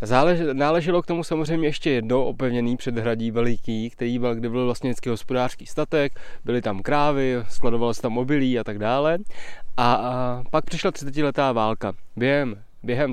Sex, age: male, 20-39